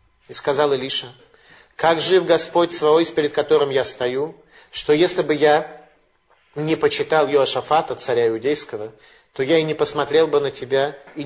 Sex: male